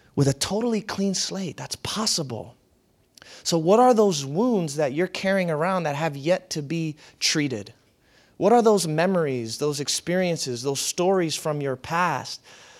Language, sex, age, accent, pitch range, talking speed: English, male, 30-49, American, 145-200 Hz, 155 wpm